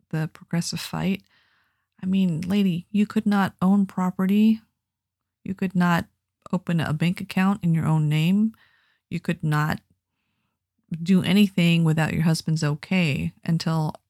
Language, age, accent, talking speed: English, 40-59, American, 135 wpm